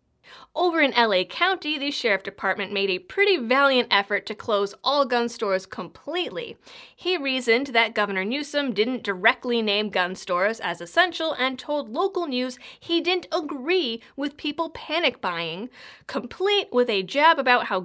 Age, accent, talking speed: 30-49, American, 160 wpm